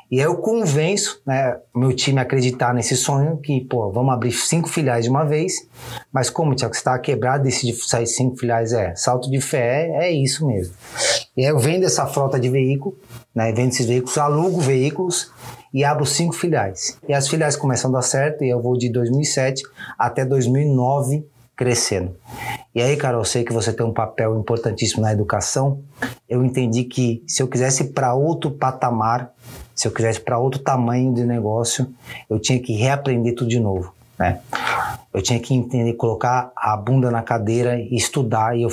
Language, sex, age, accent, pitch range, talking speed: Portuguese, male, 20-39, Brazilian, 120-140 Hz, 190 wpm